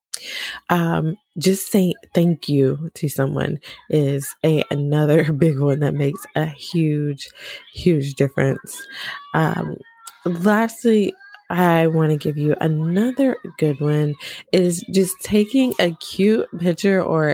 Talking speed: 120 wpm